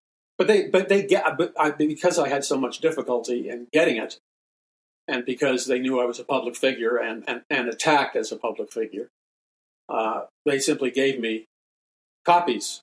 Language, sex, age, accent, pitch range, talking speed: English, male, 50-69, American, 130-185 Hz, 180 wpm